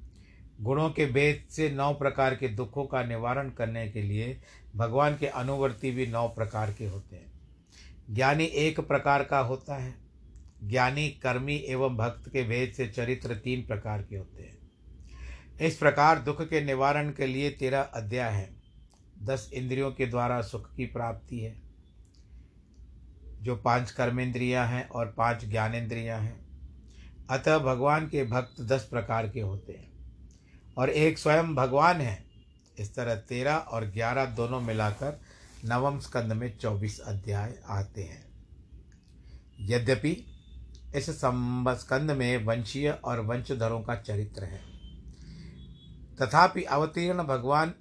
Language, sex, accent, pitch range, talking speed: Hindi, male, native, 105-135 Hz, 135 wpm